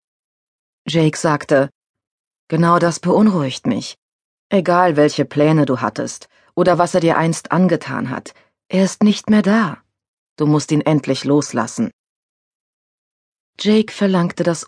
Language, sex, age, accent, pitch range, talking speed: German, female, 30-49, German, 155-200 Hz, 125 wpm